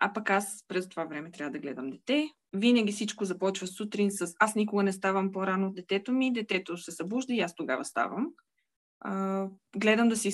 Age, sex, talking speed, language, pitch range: 20-39, female, 195 wpm, Bulgarian, 175-225 Hz